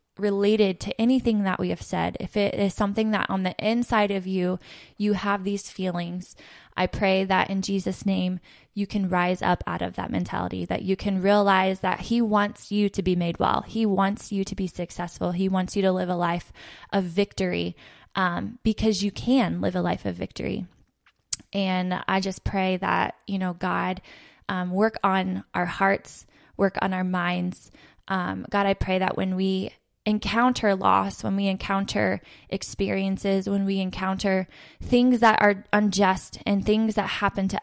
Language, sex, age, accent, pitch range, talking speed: English, female, 20-39, American, 185-205 Hz, 180 wpm